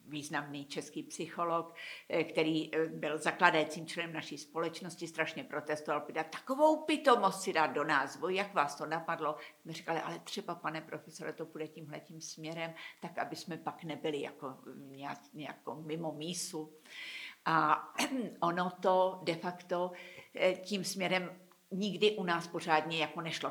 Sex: female